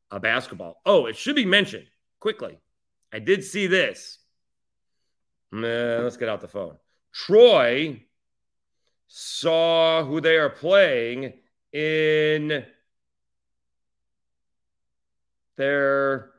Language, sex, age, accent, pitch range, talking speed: English, male, 40-59, American, 105-145 Hz, 90 wpm